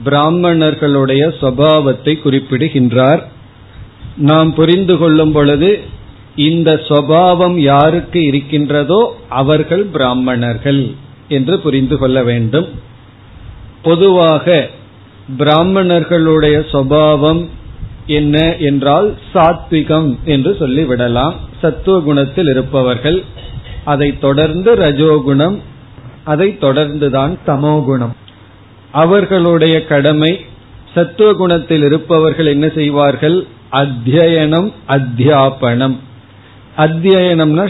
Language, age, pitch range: Tamil, 40-59, 130-160 Hz